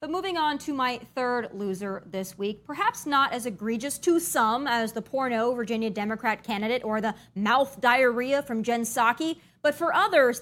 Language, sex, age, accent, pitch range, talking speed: English, female, 20-39, American, 225-310 Hz, 180 wpm